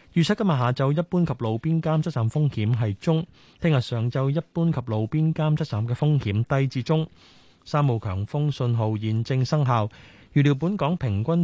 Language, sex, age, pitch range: Chinese, male, 20-39, 110-150 Hz